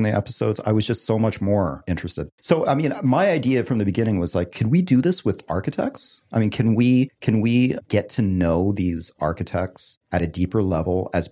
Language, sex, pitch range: English, male, 90-110 Hz